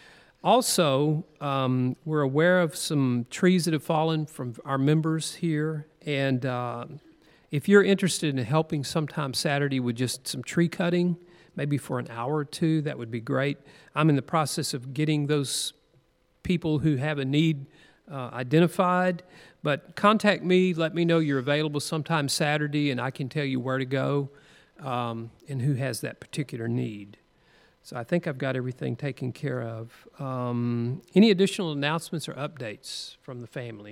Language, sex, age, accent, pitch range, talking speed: English, male, 50-69, American, 130-160 Hz, 170 wpm